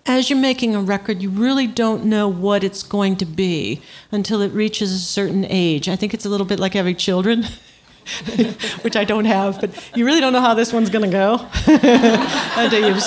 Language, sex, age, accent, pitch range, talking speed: English, female, 50-69, American, 185-230 Hz, 210 wpm